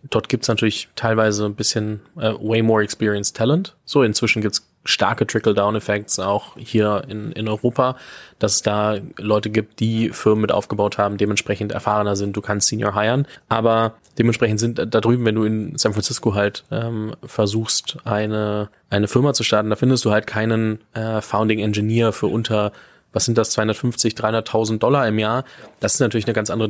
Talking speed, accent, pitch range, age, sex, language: 185 wpm, German, 105-120 Hz, 20-39, male, German